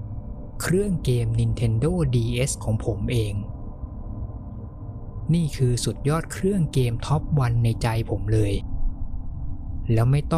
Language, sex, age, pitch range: Thai, male, 20-39, 95-130 Hz